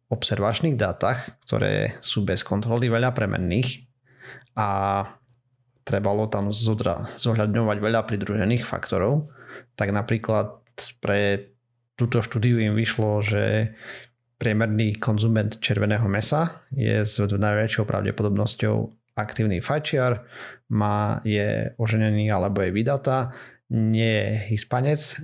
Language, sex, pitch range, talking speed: Slovak, male, 105-125 Hz, 95 wpm